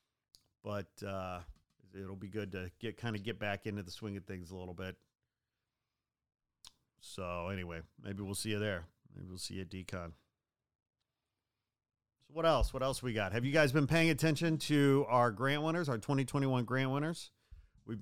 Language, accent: English, American